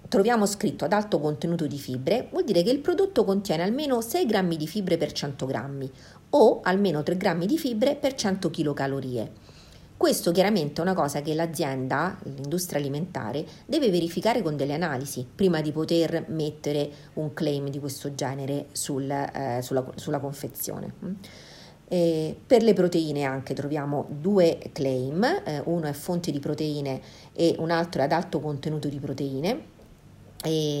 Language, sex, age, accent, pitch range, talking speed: Italian, female, 50-69, native, 145-190 Hz, 160 wpm